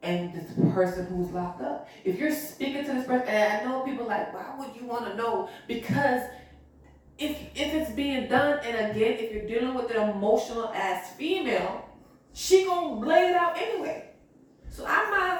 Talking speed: 190 wpm